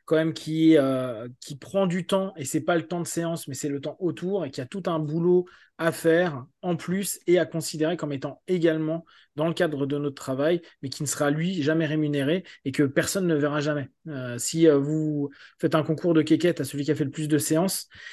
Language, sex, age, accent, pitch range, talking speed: French, male, 20-39, French, 140-170 Hz, 240 wpm